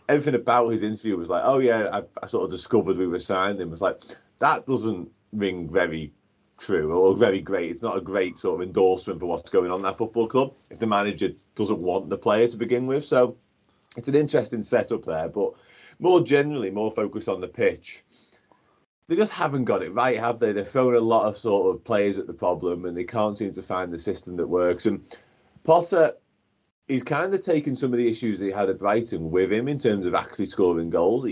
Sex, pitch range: male, 95-120 Hz